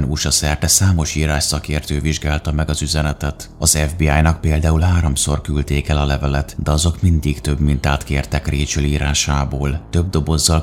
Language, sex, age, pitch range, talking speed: Hungarian, male, 30-49, 75-80 Hz, 140 wpm